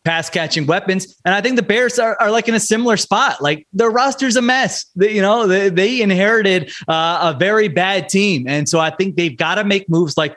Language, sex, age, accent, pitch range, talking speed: English, male, 30-49, American, 150-175 Hz, 230 wpm